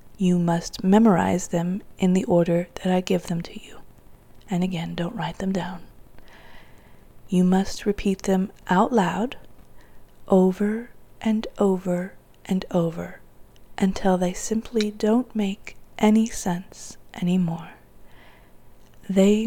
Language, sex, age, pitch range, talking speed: English, female, 30-49, 175-210 Hz, 120 wpm